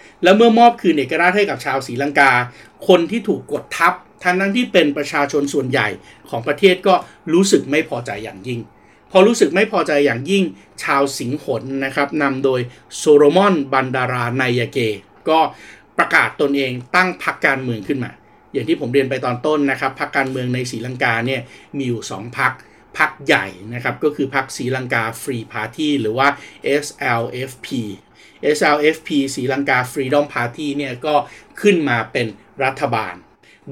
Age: 60-79